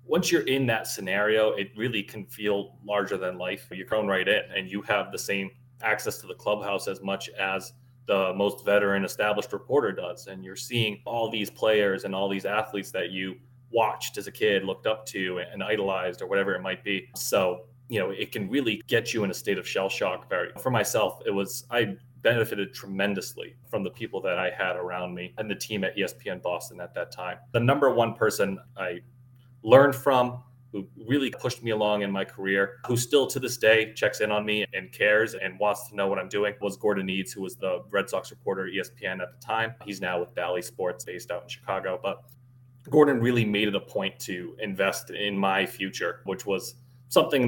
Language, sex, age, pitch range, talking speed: English, male, 30-49, 95-125 Hz, 215 wpm